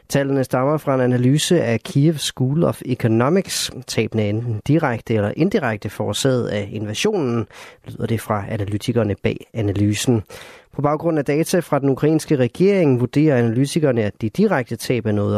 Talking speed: 160 wpm